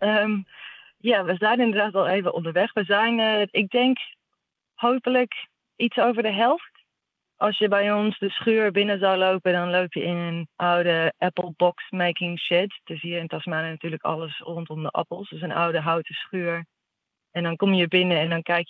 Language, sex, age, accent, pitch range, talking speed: Dutch, female, 20-39, Dutch, 160-185 Hz, 190 wpm